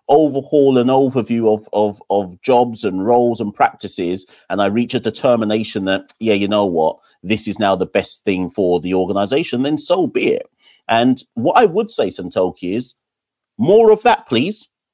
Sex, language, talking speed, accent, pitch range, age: male, English, 180 wpm, British, 100-135 Hz, 40-59